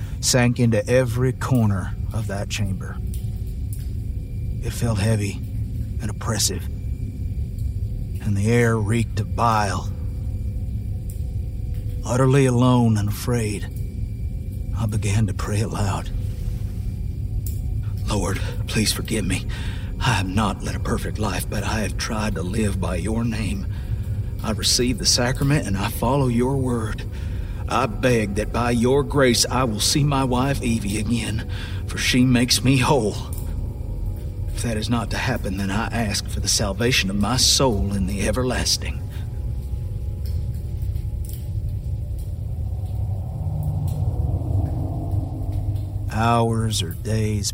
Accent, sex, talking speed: American, male, 120 wpm